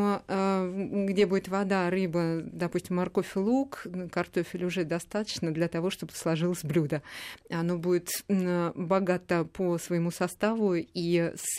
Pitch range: 175-195 Hz